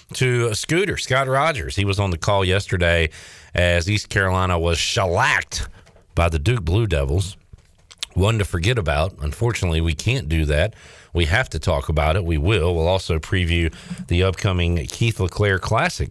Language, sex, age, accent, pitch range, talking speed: English, male, 40-59, American, 85-105 Hz, 170 wpm